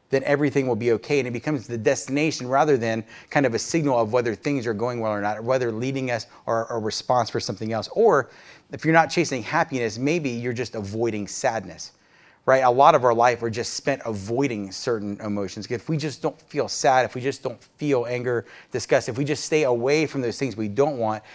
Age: 30-49